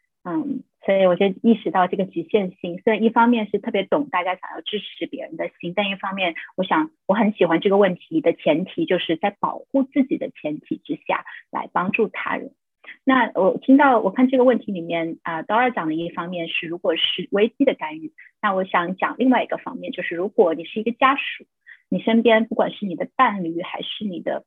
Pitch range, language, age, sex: 185-250 Hz, Chinese, 30-49, female